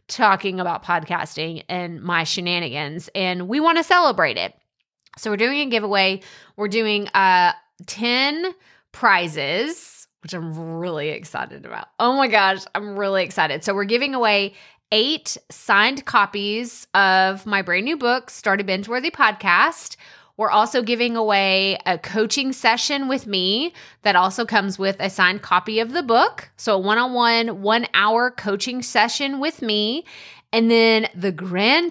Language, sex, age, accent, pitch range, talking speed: English, female, 20-39, American, 190-250 Hz, 150 wpm